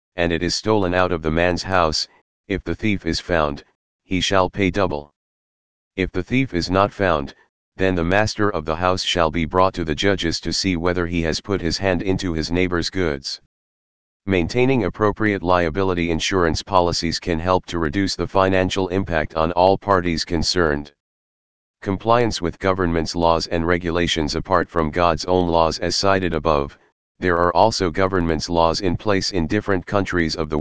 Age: 40-59